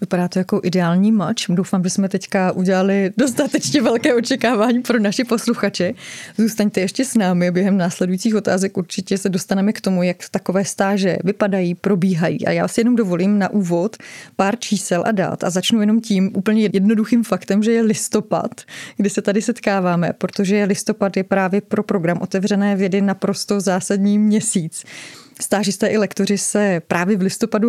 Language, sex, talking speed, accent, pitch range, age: Czech, female, 165 wpm, native, 185-215 Hz, 30-49